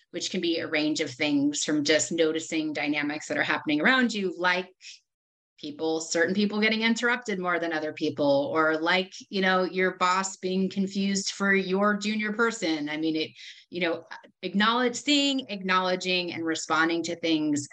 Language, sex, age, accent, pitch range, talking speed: English, female, 30-49, American, 160-210 Hz, 170 wpm